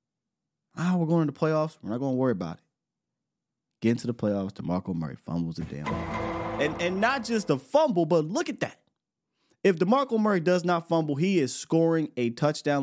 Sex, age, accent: male, 20-39, American